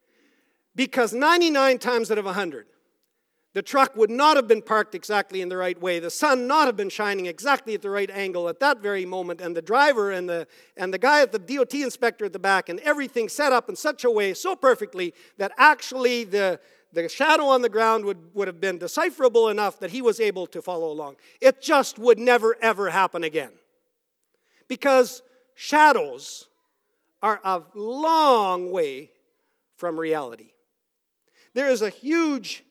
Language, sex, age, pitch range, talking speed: English, male, 50-69, 210-335 Hz, 180 wpm